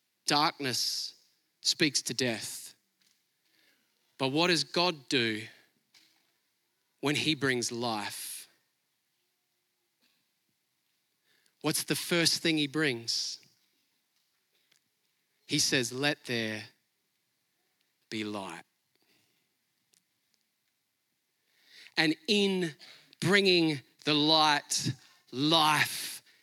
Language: English